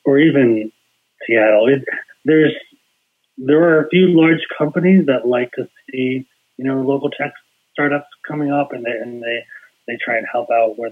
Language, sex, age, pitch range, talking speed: English, male, 30-49, 115-155 Hz, 170 wpm